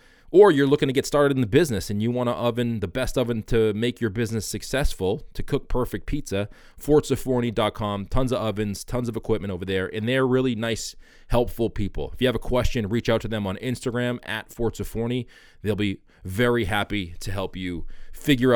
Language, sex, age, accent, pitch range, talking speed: English, male, 20-39, American, 100-125 Hz, 200 wpm